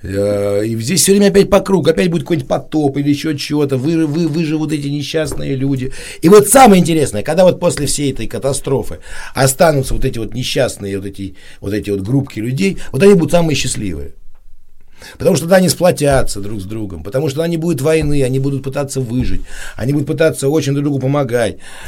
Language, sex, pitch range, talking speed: Russian, male, 120-175 Hz, 205 wpm